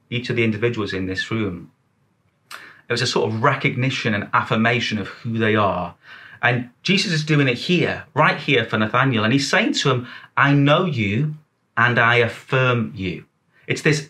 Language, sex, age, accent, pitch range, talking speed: English, male, 30-49, British, 110-145 Hz, 185 wpm